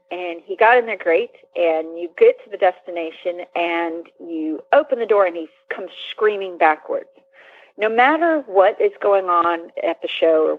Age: 30-49